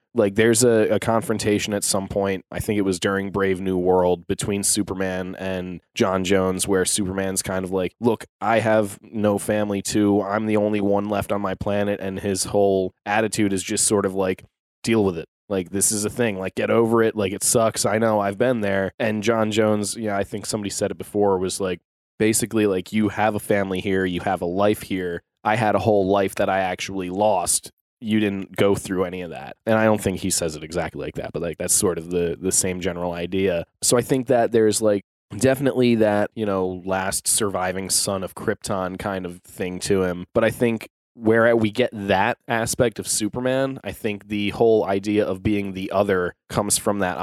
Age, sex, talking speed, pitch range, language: 20-39, male, 215 wpm, 95-110 Hz, English